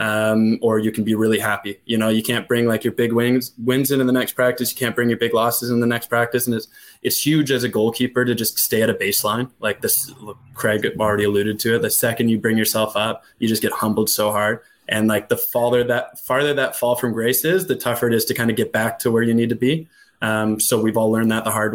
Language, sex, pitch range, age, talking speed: English, male, 110-125 Hz, 20-39, 270 wpm